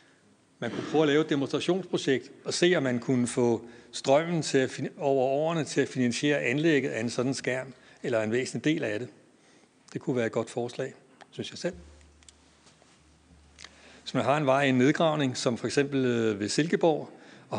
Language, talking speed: Danish, 190 wpm